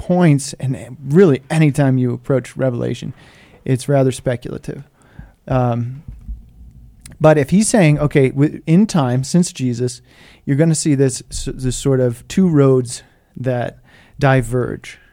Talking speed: 125 wpm